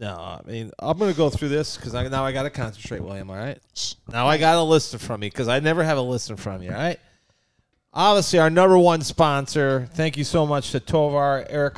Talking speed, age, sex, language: 230 wpm, 30-49, male, English